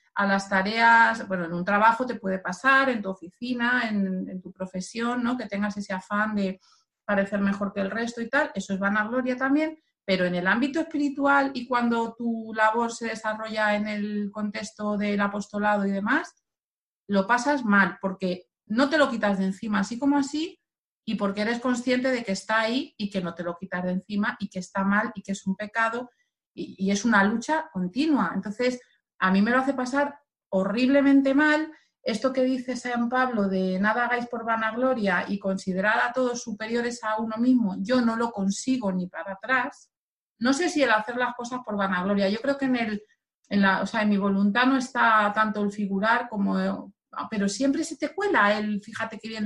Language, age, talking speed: Spanish, 30-49, 200 wpm